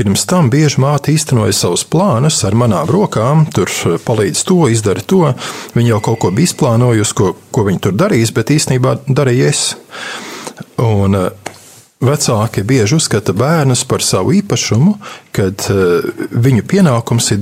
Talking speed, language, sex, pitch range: 140 wpm, English, male, 110-155 Hz